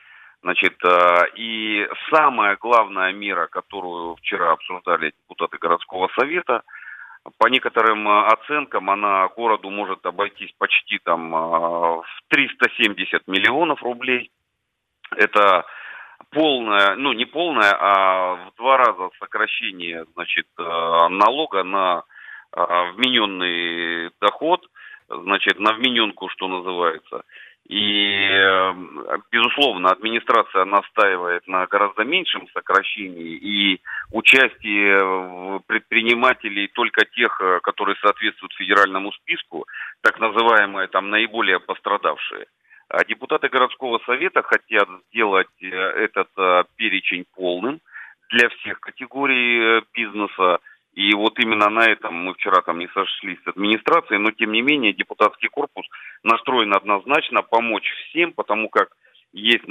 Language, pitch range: Russian, 95-115 Hz